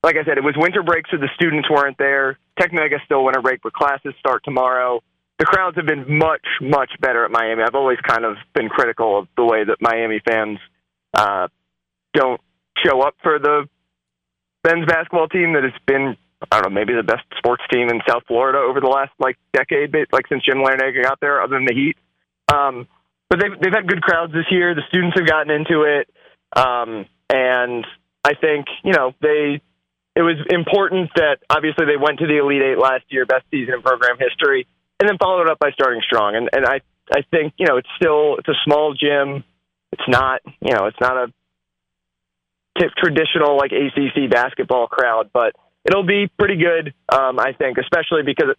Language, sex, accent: English, male, American